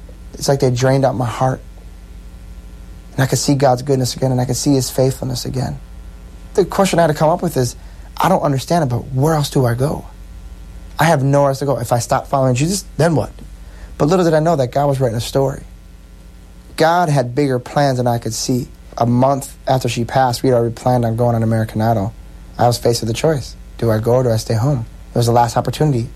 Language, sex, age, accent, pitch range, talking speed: English, male, 30-49, American, 110-130 Hz, 240 wpm